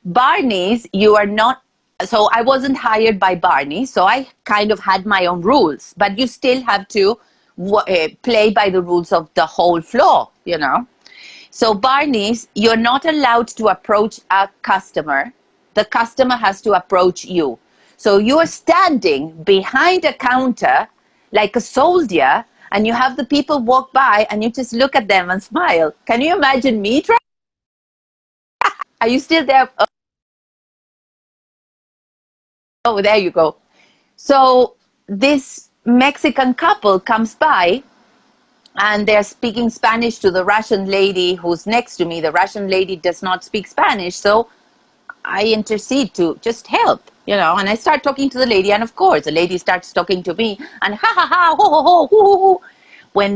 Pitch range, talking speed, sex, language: 190-265 Hz, 165 wpm, female, English